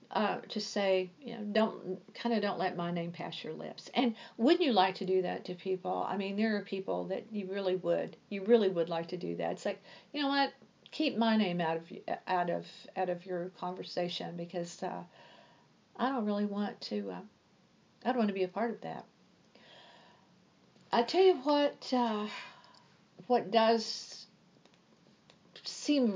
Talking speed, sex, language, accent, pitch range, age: 185 wpm, female, English, American, 185-240 Hz, 50-69